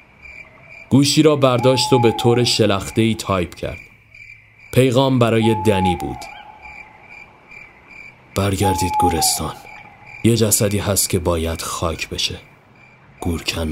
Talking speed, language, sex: 100 wpm, Persian, male